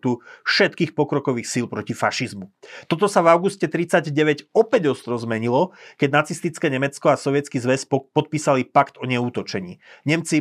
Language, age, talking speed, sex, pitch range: Slovak, 30-49, 140 wpm, male, 125-150 Hz